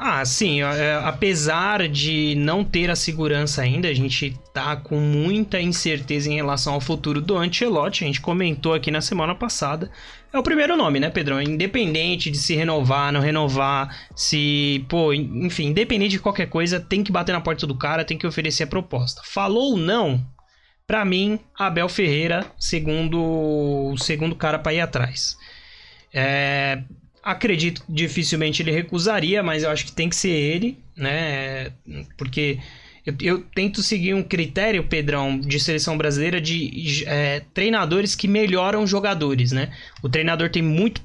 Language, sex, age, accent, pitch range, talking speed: Portuguese, male, 20-39, Brazilian, 140-175 Hz, 160 wpm